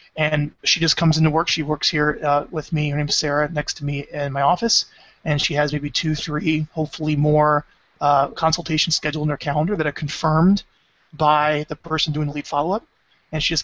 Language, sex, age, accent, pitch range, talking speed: English, male, 30-49, American, 145-165 Hz, 215 wpm